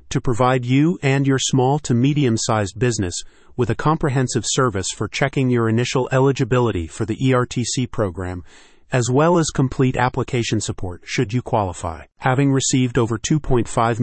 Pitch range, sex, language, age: 110-135 Hz, male, English, 40-59